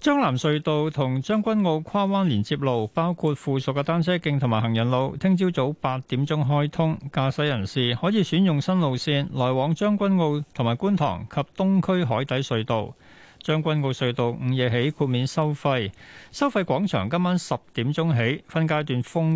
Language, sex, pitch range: Chinese, male, 125-170 Hz